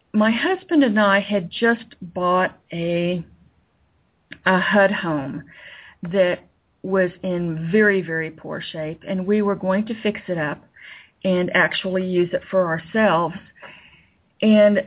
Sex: female